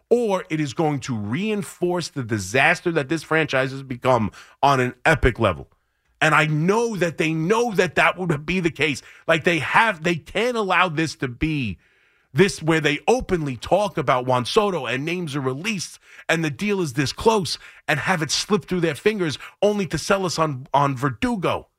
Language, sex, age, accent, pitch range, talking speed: English, male, 30-49, American, 140-190 Hz, 195 wpm